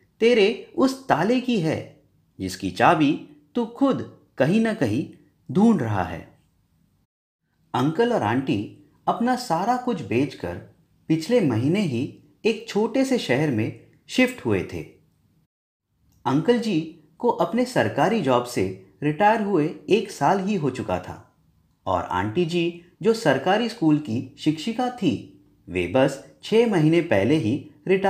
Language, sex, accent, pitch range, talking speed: English, male, Indian, 130-215 Hz, 135 wpm